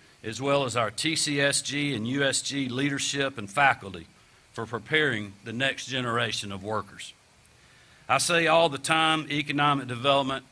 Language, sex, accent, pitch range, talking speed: English, male, American, 115-140 Hz, 135 wpm